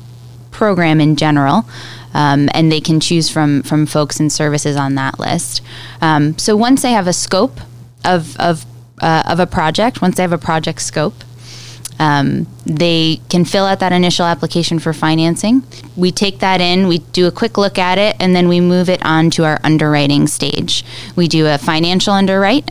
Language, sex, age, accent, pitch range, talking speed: English, female, 10-29, American, 145-175 Hz, 190 wpm